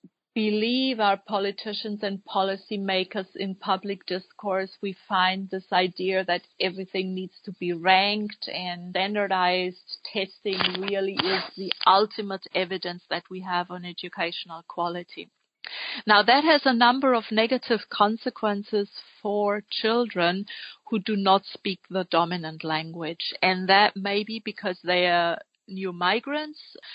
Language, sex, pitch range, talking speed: English, female, 185-225 Hz, 130 wpm